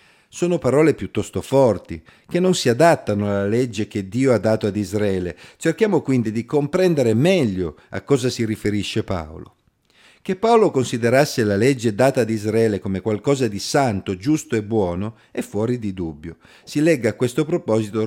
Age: 50-69